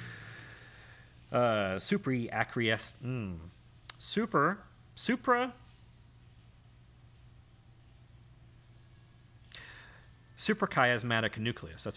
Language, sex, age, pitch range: English, male, 40-59, 115-150 Hz